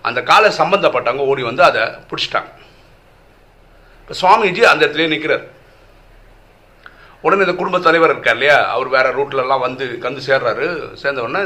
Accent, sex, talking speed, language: native, male, 130 wpm, Tamil